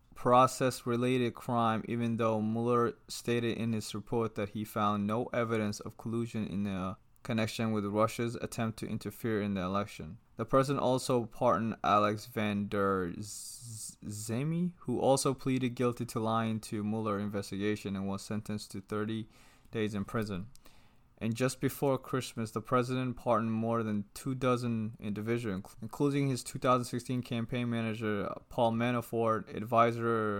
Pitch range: 105-125 Hz